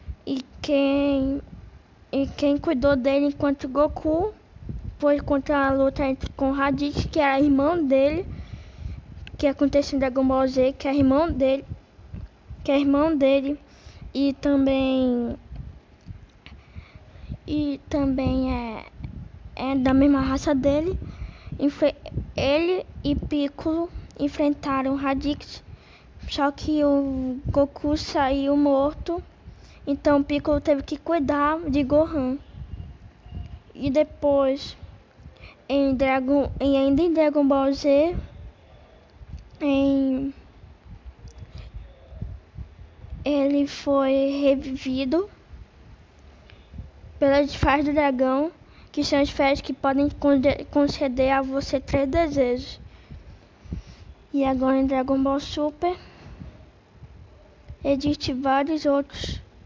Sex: female